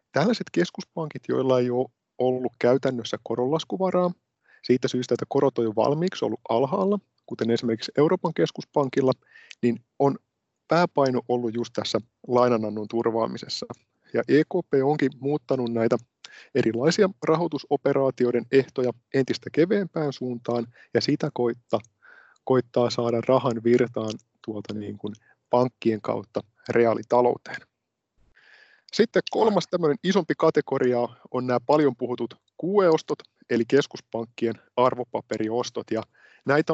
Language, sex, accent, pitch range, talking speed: Finnish, male, native, 115-140 Hz, 110 wpm